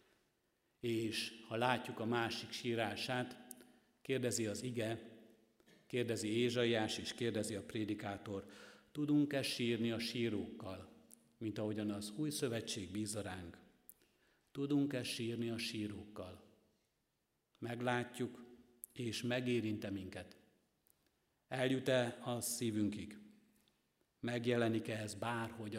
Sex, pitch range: male, 105-120 Hz